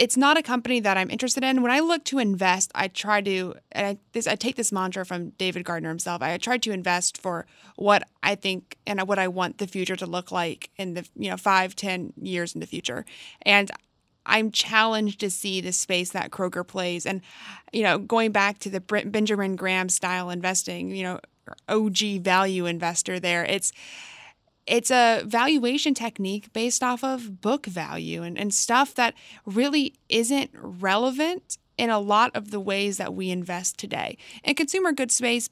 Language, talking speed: English, 190 wpm